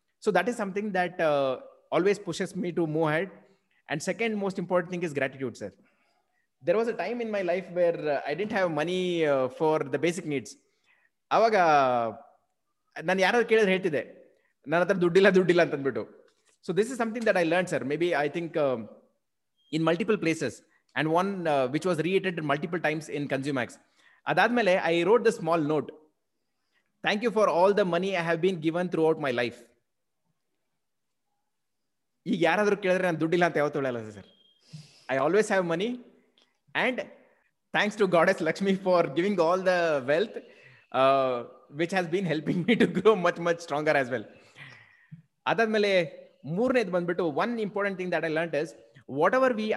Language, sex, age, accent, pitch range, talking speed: Kannada, male, 20-39, native, 155-195 Hz, 170 wpm